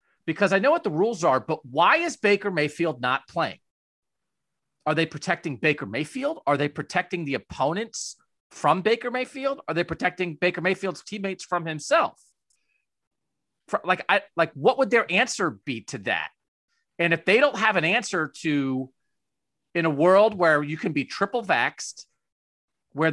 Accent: American